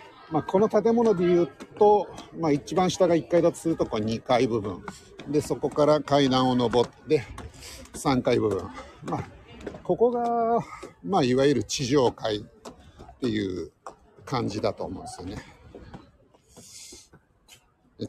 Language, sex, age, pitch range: Japanese, male, 50-69, 105-175 Hz